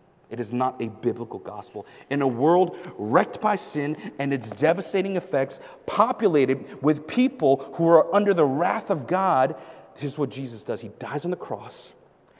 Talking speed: 175 wpm